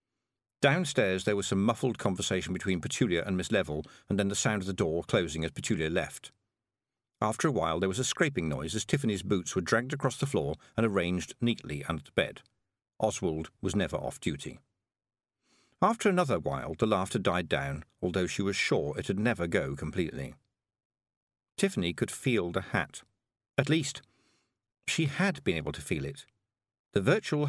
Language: English